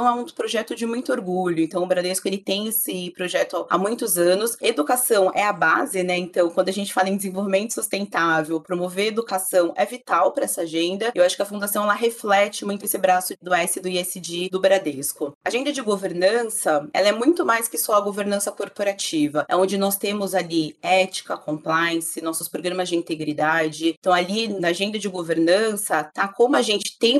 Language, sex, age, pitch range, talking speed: Portuguese, female, 30-49, 180-215 Hz, 190 wpm